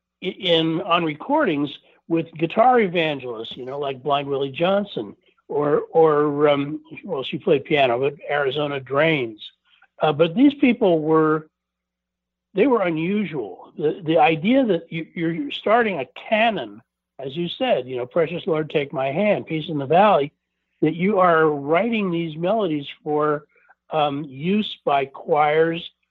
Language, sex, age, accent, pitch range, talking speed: English, male, 60-79, American, 140-180 Hz, 145 wpm